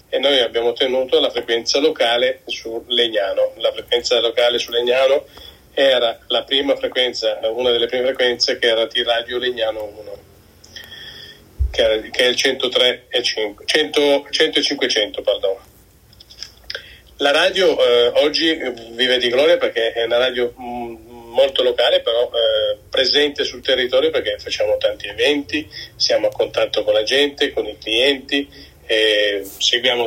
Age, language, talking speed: 40-59, English, 130 wpm